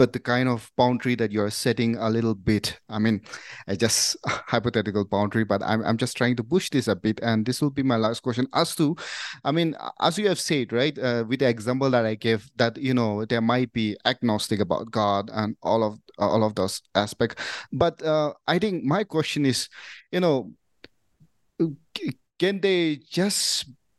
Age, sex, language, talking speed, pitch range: 30-49, male, English, 195 wpm, 120-160 Hz